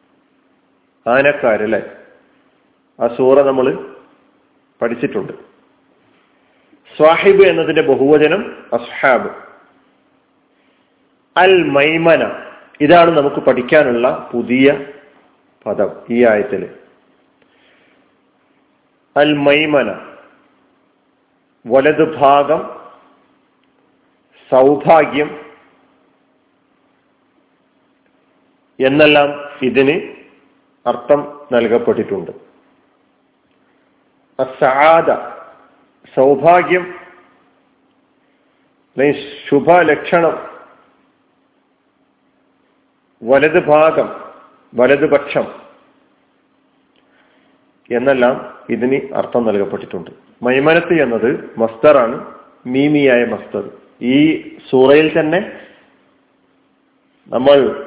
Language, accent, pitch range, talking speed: Malayalam, native, 135-170 Hz, 45 wpm